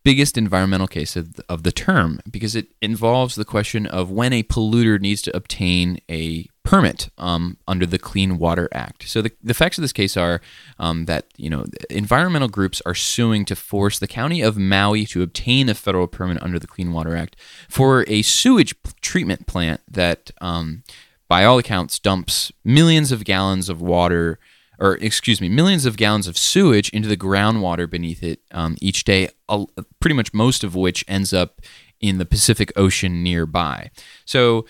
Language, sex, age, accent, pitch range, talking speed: English, male, 20-39, American, 90-115 Hz, 180 wpm